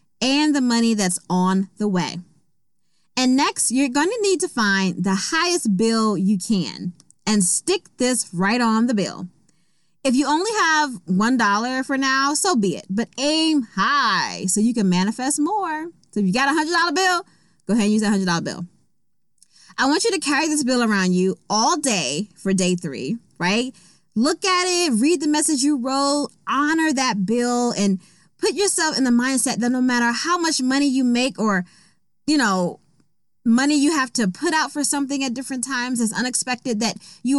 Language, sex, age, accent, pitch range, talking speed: English, female, 20-39, American, 195-295 Hz, 195 wpm